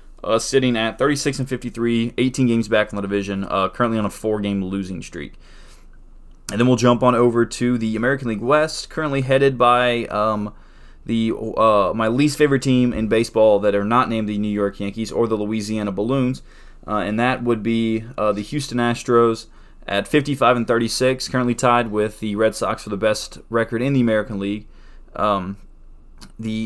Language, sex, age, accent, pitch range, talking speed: English, male, 20-39, American, 105-130 Hz, 180 wpm